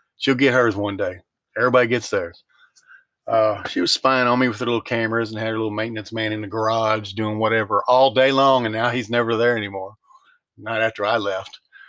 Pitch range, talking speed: 110-160 Hz, 210 wpm